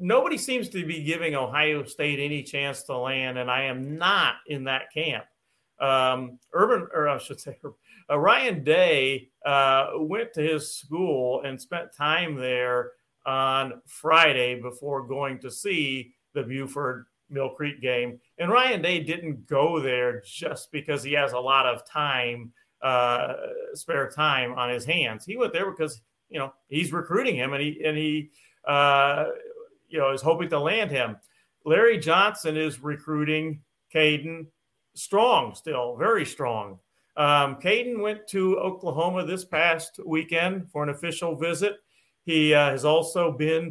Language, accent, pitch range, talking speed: English, American, 135-165 Hz, 155 wpm